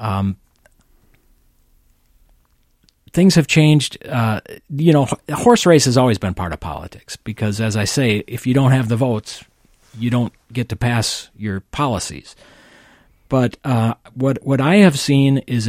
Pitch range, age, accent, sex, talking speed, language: 105-140 Hz, 50-69, American, male, 155 wpm, English